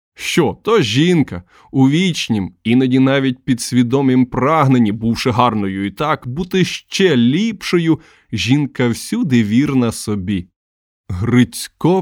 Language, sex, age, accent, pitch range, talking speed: Ukrainian, male, 20-39, native, 105-135 Hz, 110 wpm